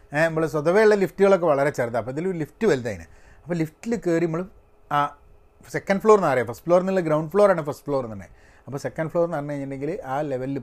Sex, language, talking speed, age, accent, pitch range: male, Malayalam, 175 wpm, 30-49, native, 140-205 Hz